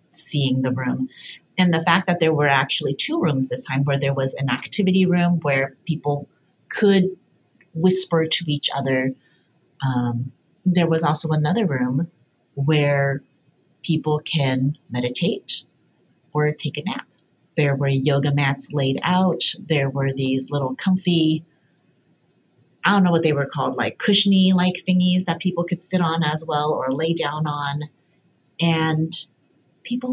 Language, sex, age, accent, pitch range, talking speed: English, female, 30-49, American, 150-190 Hz, 150 wpm